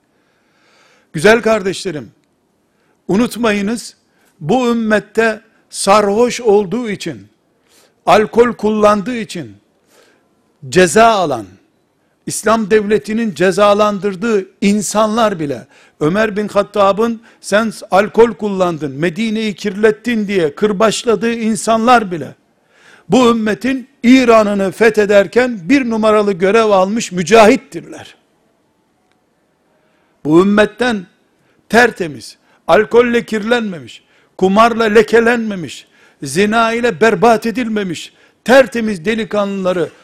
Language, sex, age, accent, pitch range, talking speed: Turkish, male, 60-79, native, 195-230 Hz, 80 wpm